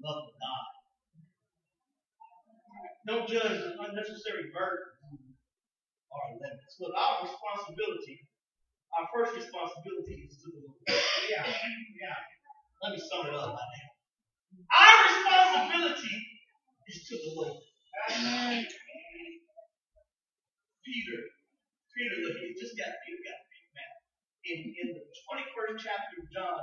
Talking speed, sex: 125 wpm, male